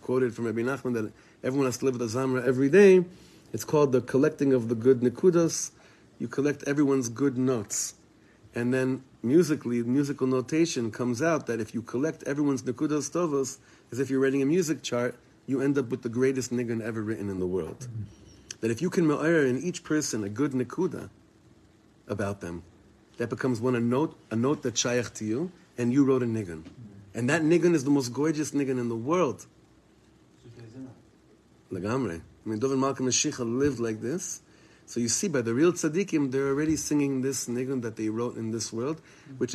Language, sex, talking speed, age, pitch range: English, male, 195 wpm, 30-49, 115-150 Hz